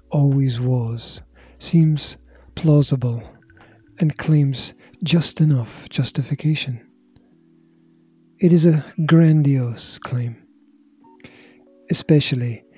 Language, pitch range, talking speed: English, 115-165 Hz, 70 wpm